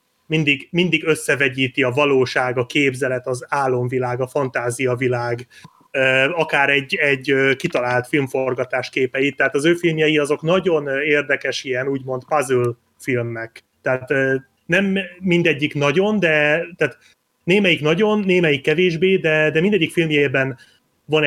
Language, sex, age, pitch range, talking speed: Hungarian, male, 30-49, 125-150 Hz, 120 wpm